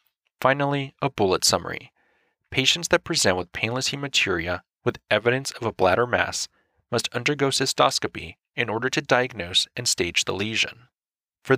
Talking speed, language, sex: 145 wpm, English, male